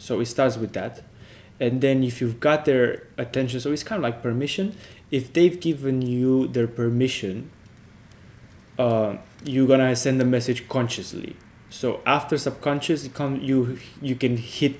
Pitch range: 115-140 Hz